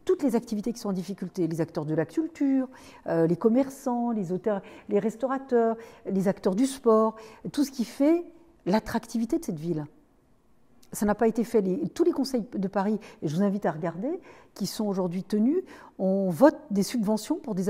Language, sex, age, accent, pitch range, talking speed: French, female, 50-69, French, 175-250 Hz, 195 wpm